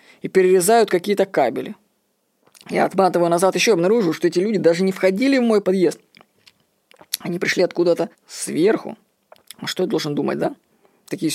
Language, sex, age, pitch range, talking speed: Russian, female, 20-39, 170-225 Hz, 155 wpm